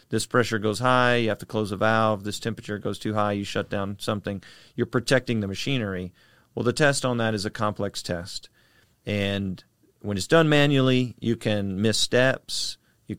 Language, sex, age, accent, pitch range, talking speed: English, male, 40-59, American, 100-125 Hz, 190 wpm